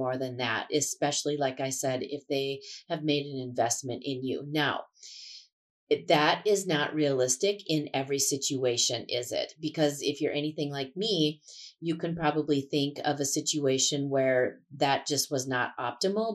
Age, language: 30-49, English